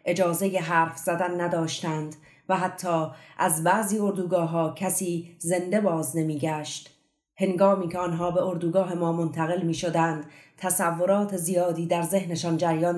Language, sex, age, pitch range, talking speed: Persian, female, 30-49, 165-185 Hz, 125 wpm